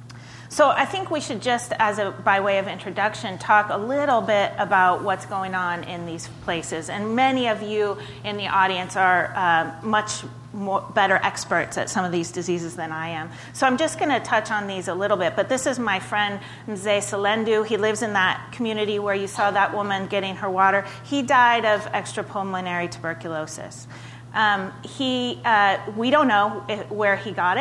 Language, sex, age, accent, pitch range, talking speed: English, female, 30-49, American, 185-220 Hz, 195 wpm